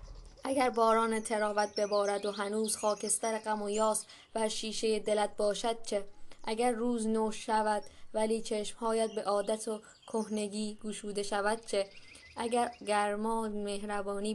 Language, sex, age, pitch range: Persian, female, 20-39, 200-225 Hz